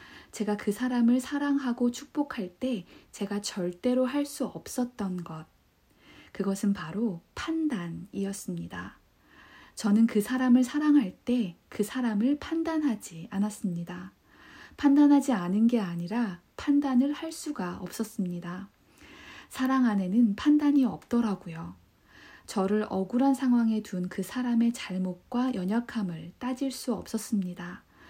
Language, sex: Korean, female